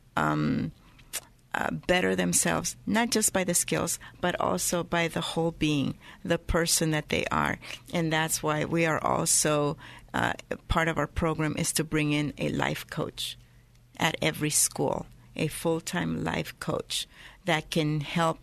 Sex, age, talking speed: female, 50-69, 160 wpm